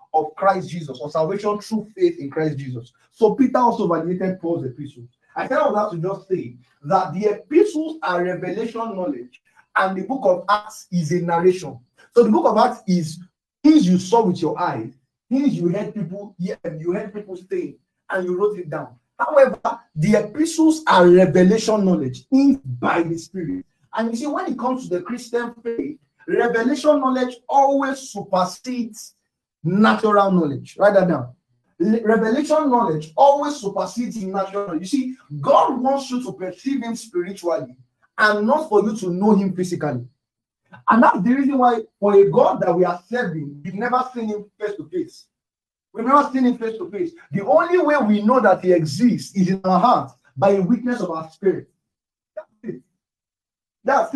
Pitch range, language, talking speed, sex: 175-245 Hz, English, 180 wpm, male